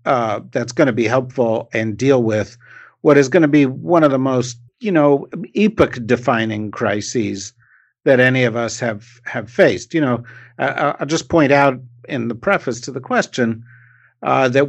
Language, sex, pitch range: English, male, 120-140 Hz